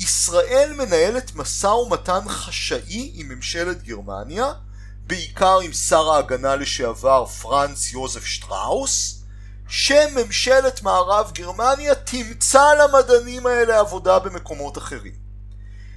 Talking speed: 95 wpm